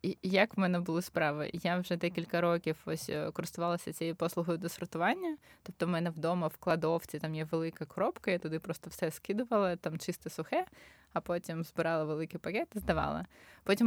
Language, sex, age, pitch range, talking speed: Ukrainian, female, 20-39, 170-210 Hz, 180 wpm